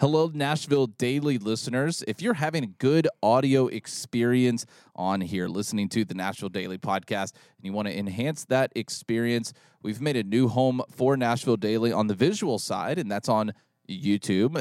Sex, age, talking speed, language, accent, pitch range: male, 30-49, 175 wpm, English, American, 105-135 Hz